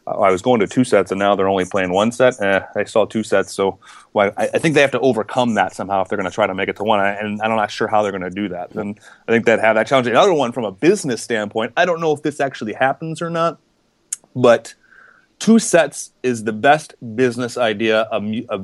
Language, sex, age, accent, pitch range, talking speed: English, male, 30-49, American, 105-140 Hz, 250 wpm